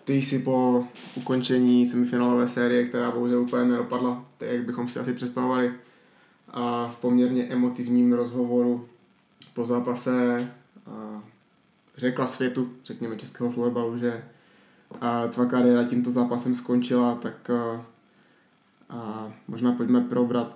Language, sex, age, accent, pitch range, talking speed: Czech, male, 20-39, native, 120-125 Hz, 125 wpm